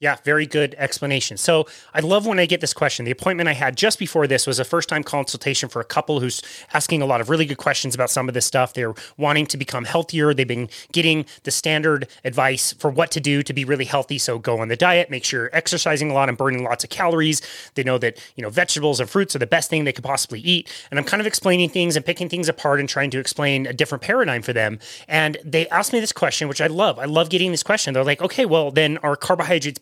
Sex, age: male, 30-49